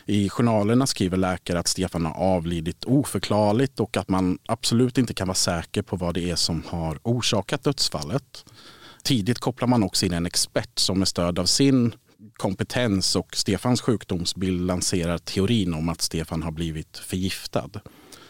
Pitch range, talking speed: 90-110 Hz, 160 wpm